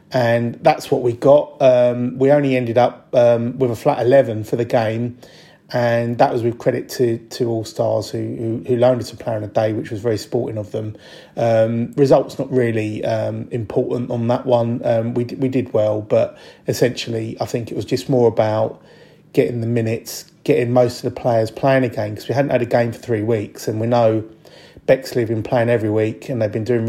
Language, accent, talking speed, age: English, British, 215 wpm, 30-49